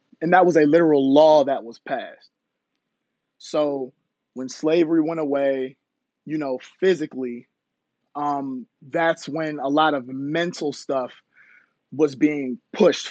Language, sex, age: English, male, 20-39